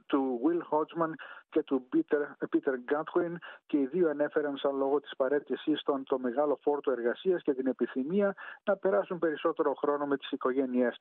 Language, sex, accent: Greek, male, native